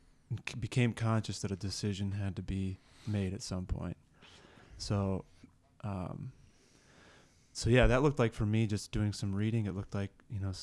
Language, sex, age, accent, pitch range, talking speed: English, male, 20-39, American, 95-110 Hz, 170 wpm